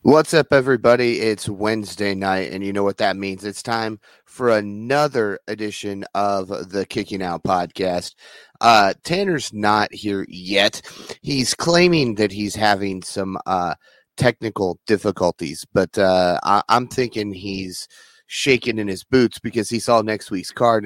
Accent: American